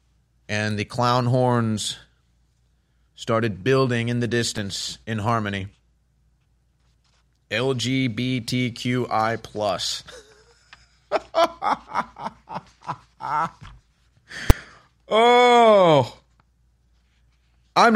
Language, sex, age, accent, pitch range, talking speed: English, male, 30-49, American, 120-180 Hz, 50 wpm